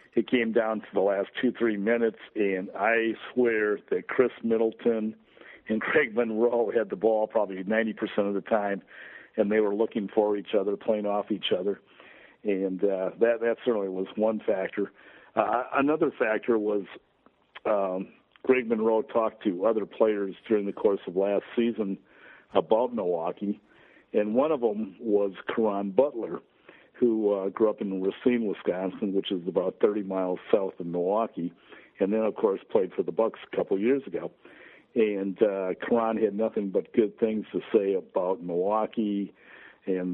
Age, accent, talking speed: 60-79, American, 165 wpm